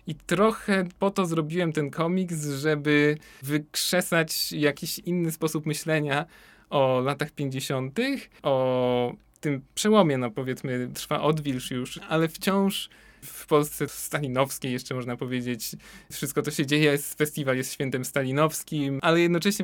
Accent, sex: native, male